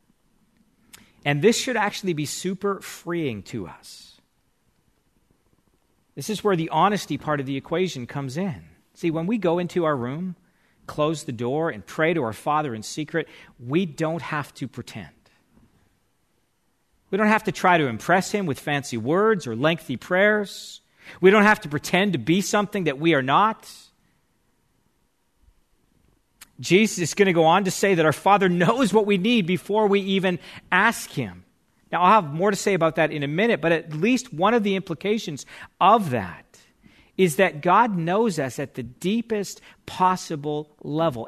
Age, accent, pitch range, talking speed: 40-59, American, 150-200 Hz, 170 wpm